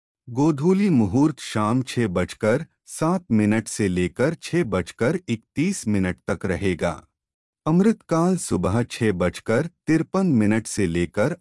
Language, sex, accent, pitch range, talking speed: Hindi, male, native, 95-160 Hz, 120 wpm